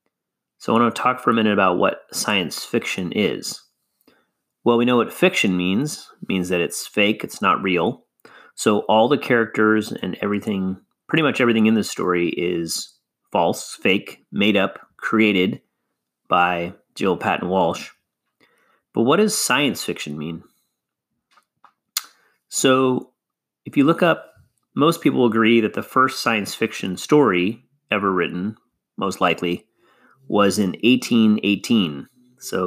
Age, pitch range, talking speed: 30-49, 95-120 Hz, 140 wpm